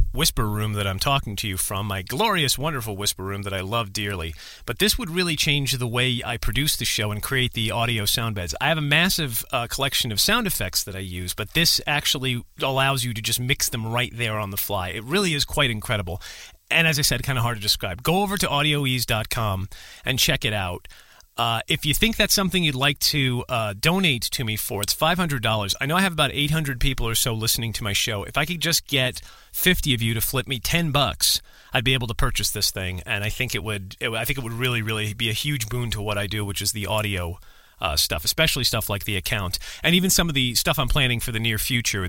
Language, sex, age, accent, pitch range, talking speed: English, male, 40-59, American, 105-140 Hz, 250 wpm